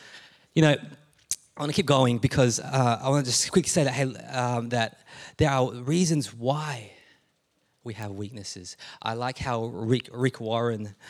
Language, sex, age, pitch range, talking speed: English, male, 20-39, 110-130 Hz, 170 wpm